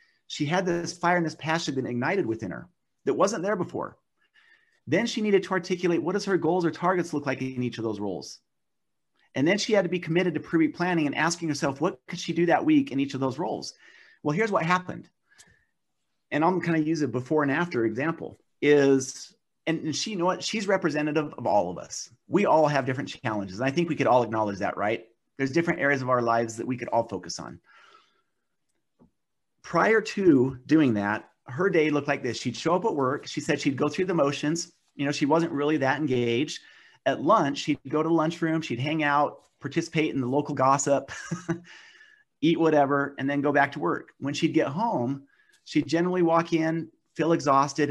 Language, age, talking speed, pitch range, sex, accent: English, 30-49, 215 wpm, 135-175 Hz, male, American